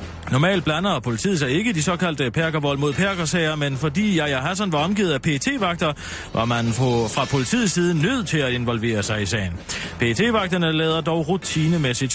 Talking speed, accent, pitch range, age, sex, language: 175 wpm, native, 125-185 Hz, 30-49, male, Danish